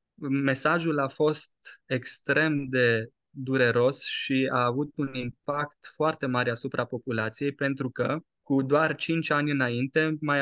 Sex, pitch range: male, 130-160 Hz